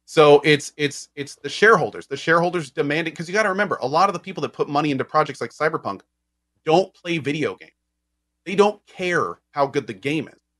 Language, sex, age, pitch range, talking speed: English, male, 30-49, 110-165 Hz, 215 wpm